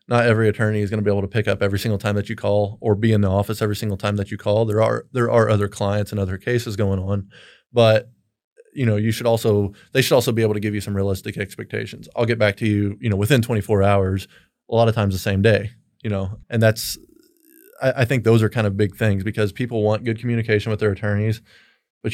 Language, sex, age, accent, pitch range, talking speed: English, male, 20-39, American, 100-115 Hz, 255 wpm